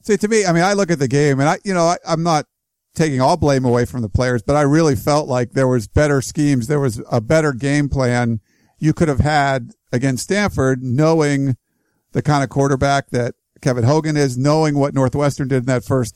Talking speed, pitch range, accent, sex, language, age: 225 wpm, 135-165 Hz, American, male, English, 50-69